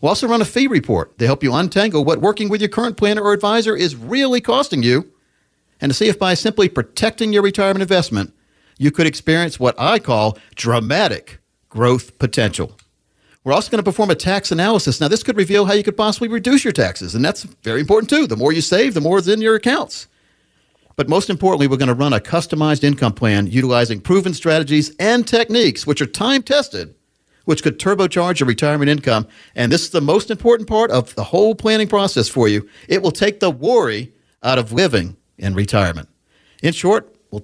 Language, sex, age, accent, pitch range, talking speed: English, male, 50-69, American, 130-210 Hz, 205 wpm